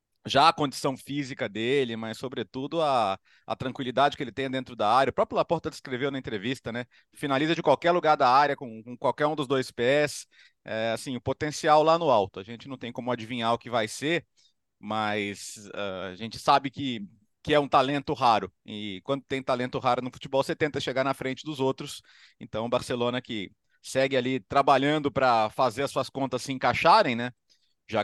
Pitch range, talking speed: 130-195 Hz, 195 wpm